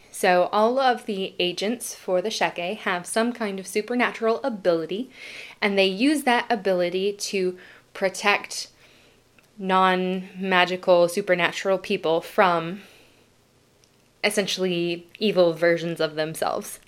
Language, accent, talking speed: English, American, 105 wpm